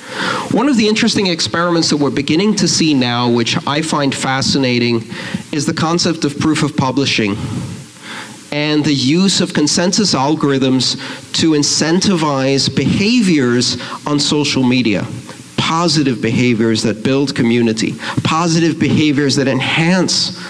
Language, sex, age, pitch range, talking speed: English, male, 40-59, 120-155 Hz, 125 wpm